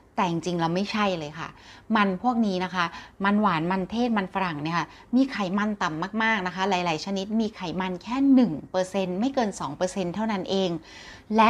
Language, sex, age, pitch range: Thai, female, 30-49, 180-225 Hz